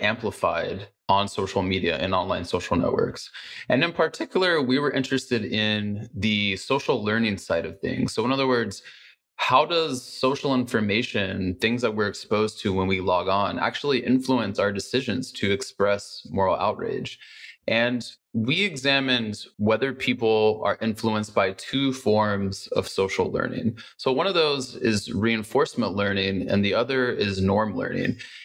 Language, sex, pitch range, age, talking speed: English, male, 100-125 Hz, 20-39, 150 wpm